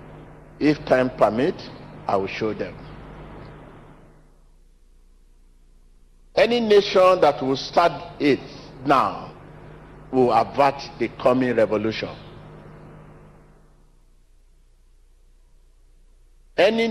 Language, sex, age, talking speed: English, male, 50-69, 70 wpm